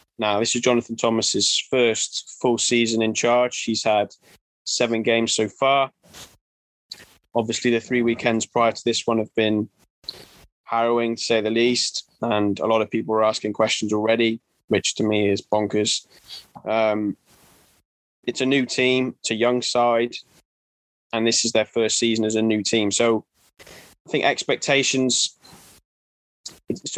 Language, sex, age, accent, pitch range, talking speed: English, male, 20-39, British, 110-120 Hz, 150 wpm